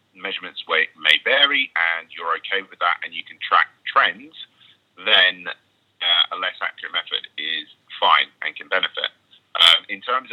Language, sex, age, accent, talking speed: English, male, 30-49, British, 165 wpm